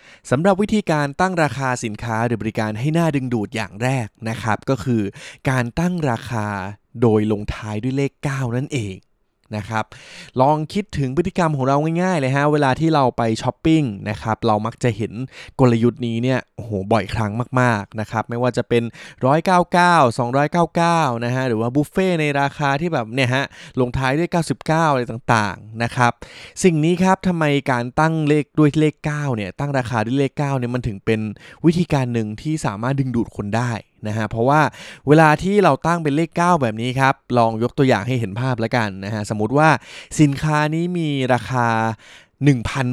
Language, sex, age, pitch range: Thai, male, 20-39, 115-150 Hz